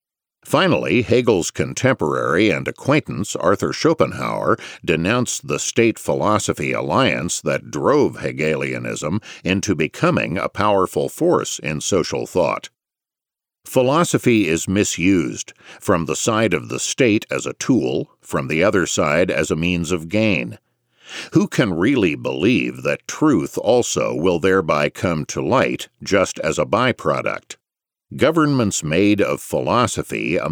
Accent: American